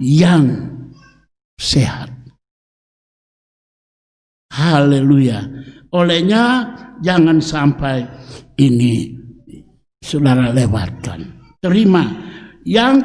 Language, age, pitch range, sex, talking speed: Indonesian, 60-79, 160-260 Hz, male, 50 wpm